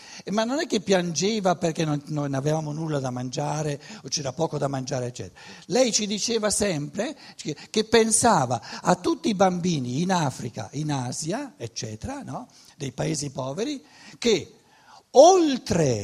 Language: Italian